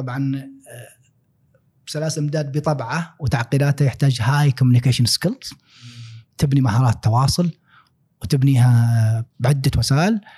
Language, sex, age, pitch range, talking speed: Arabic, male, 30-49, 125-145 Hz, 85 wpm